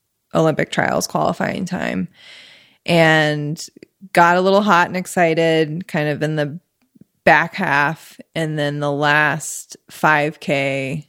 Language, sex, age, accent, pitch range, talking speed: English, female, 20-39, American, 145-175 Hz, 120 wpm